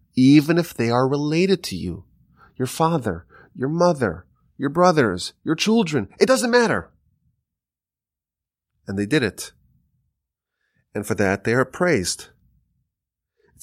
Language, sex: English, male